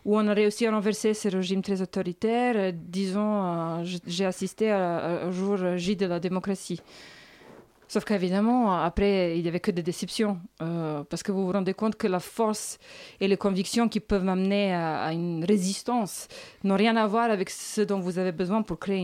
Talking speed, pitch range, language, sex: 205 wpm, 195-245 Hz, French, female